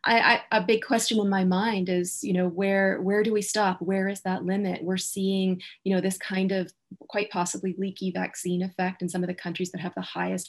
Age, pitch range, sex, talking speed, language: 20-39, 180-205 Hz, female, 235 wpm, English